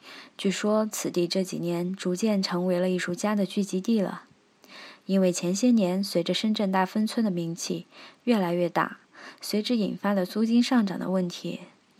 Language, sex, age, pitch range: Chinese, female, 20-39, 180-210 Hz